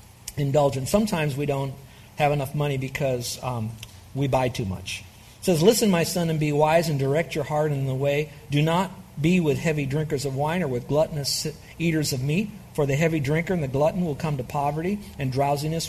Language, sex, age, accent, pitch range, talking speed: English, male, 50-69, American, 120-150 Hz, 210 wpm